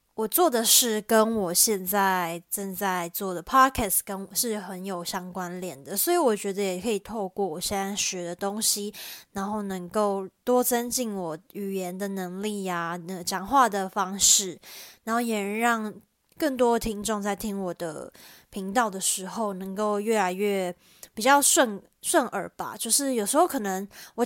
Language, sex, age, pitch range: Chinese, female, 20-39, 185-220 Hz